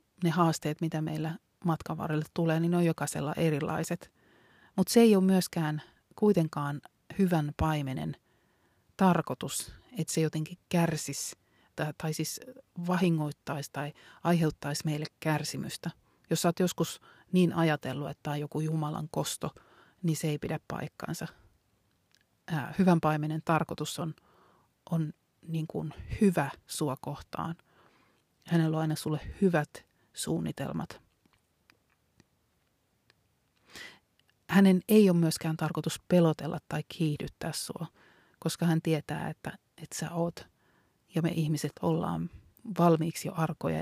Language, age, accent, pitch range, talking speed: Finnish, 30-49, native, 155-175 Hz, 120 wpm